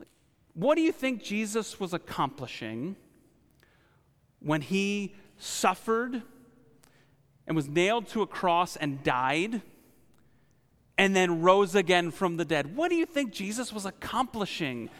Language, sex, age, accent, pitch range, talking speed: English, male, 40-59, American, 145-200 Hz, 130 wpm